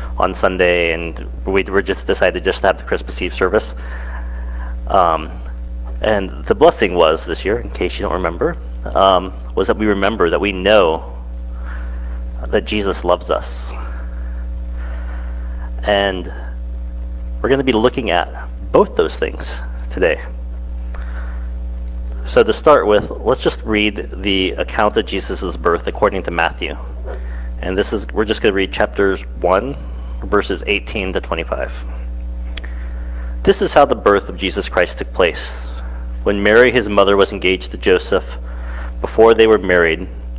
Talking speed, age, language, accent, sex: 150 wpm, 30-49, English, American, male